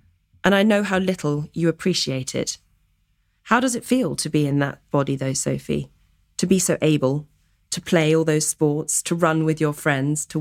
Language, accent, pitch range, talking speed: English, British, 145-185 Hz, 195 wpm